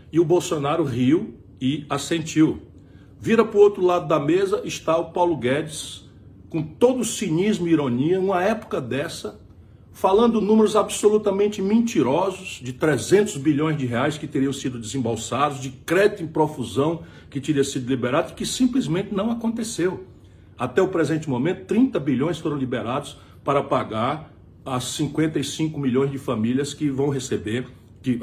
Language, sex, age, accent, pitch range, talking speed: Portuguese, male, 60-79, Brazilian, 125-175 Hz, 150 wpm